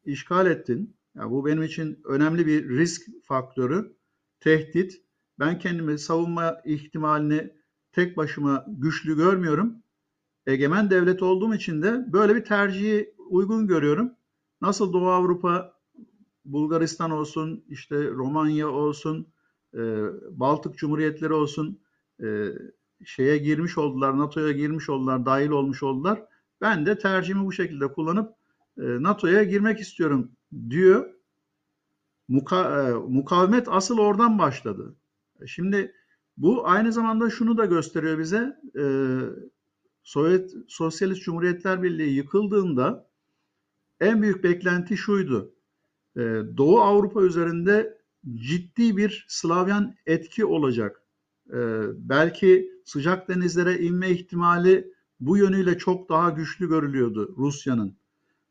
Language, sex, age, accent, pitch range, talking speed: Turkish, male, 50-69, native, 150-190 Hz, 105 wpm